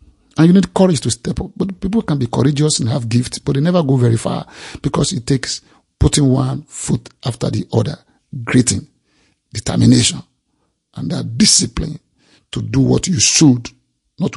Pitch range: 110-150 Hz